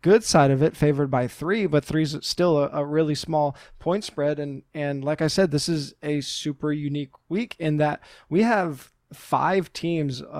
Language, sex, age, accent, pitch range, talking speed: English, male, 20-39, American, 140-170 Hz, 195 wpm